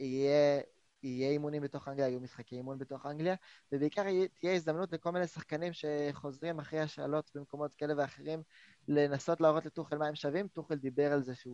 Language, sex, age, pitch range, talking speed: Hebrew, male, 20-39, 130-160 Hz, 170 wpm